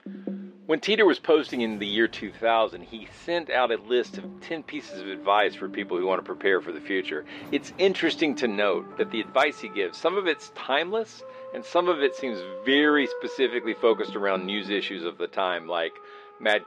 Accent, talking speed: American, 200 wpm